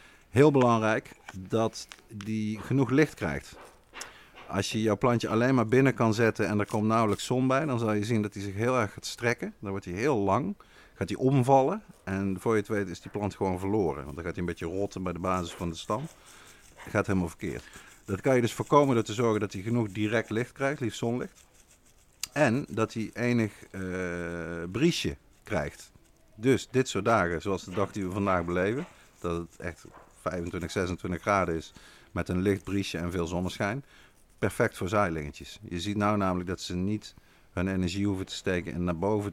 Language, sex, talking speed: Dutch, male, 205 wpm